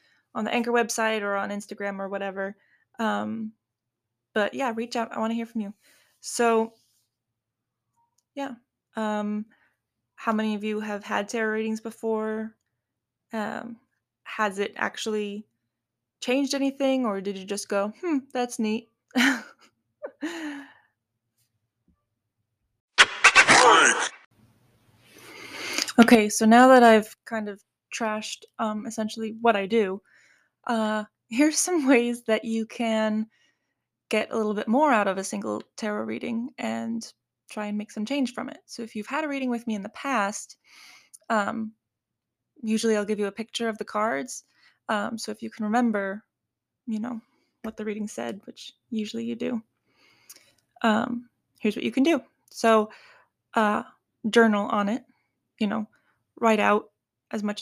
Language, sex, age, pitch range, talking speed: English, female, 20-39, 205-235 Hz, 145 wpm